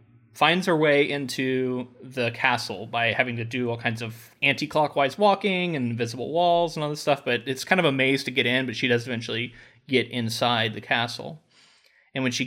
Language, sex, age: English, male, 20-39